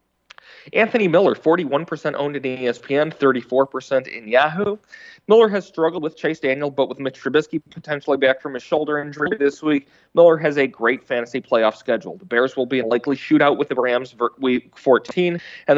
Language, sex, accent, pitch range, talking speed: English, male, American, 125-155 Hz, 185 wpm